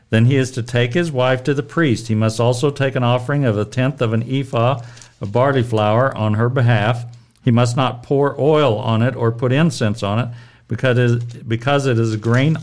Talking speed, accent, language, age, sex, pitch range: 215 wpm, American, English, 50-69, male, 115-135 Hz